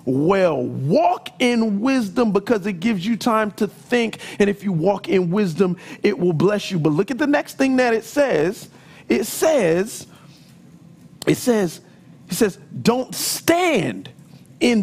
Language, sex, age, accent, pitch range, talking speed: English, male, 40-59, American, 160-225 Hz, 160 wpm